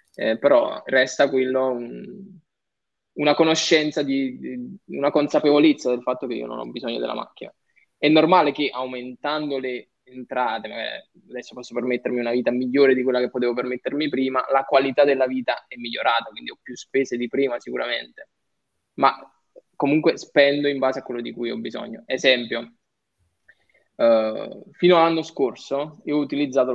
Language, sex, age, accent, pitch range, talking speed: Italian, male, 20-39, native, 120-140 Hz, 160 wpm